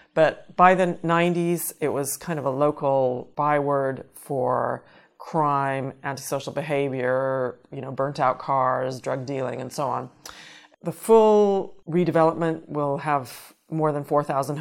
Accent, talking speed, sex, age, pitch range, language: American, 135 wpm, female, 40-59, 140-175 Hz, English